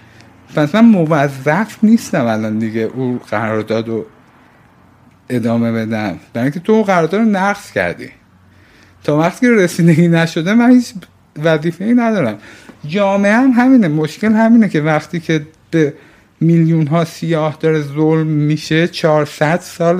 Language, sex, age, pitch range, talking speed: Persian, male, 50-69, 145-185 Hz, 130 wpm